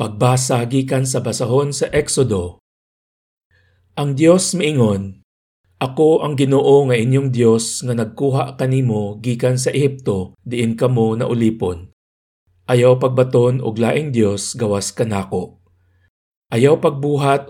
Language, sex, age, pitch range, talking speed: Filipino, male, 50-69, 105-130 Hz, 115 wpm